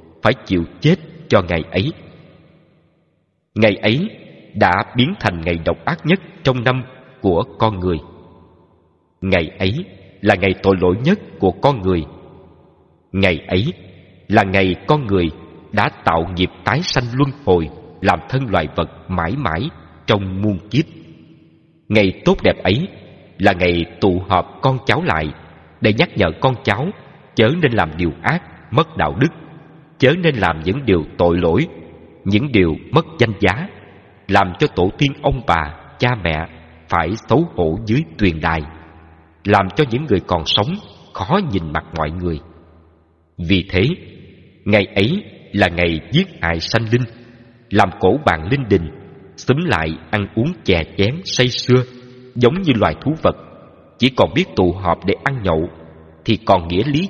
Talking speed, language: 160 wpm, Vietnamese